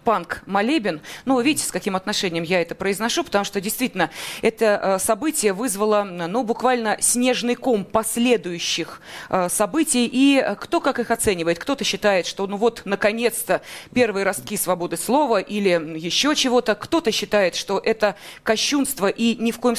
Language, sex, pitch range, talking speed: Russian, female, 195-250 Hz, 145 wpm